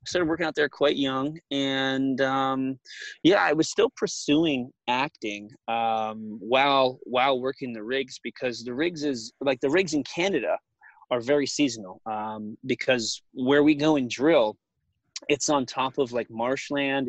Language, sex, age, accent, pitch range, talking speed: English, male, 20-39, American, 120-140 Hz, 160 wpm